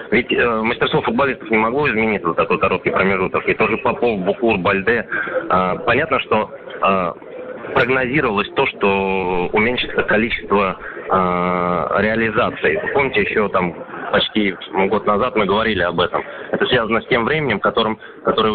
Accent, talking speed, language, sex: native, 140 wpm, Russian, male